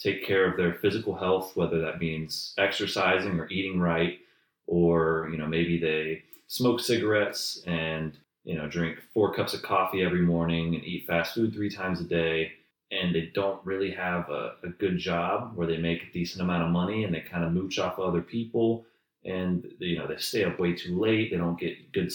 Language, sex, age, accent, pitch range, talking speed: English, male, 30-49, American, 80-100 Hz, 205 wpm